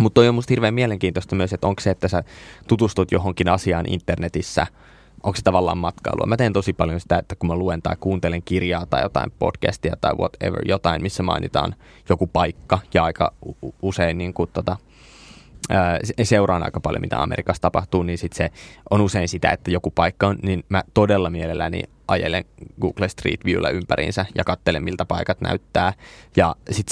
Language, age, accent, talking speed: Finnish, 20-39, native, 170 wpm